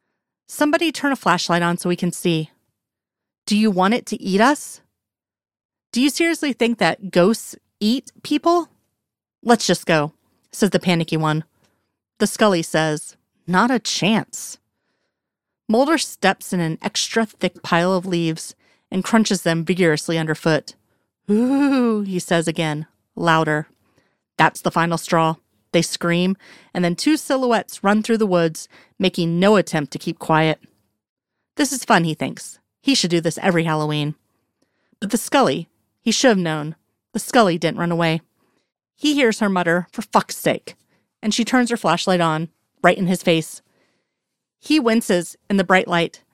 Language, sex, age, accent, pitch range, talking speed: English, female, 30-49, American, 165-225 Hz, 160 wpm